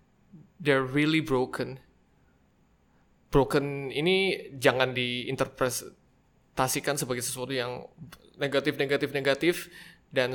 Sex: male